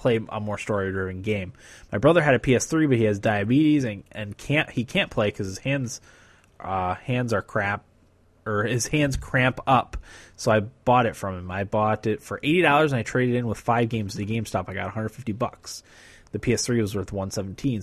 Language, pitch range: English, 105-125 Hz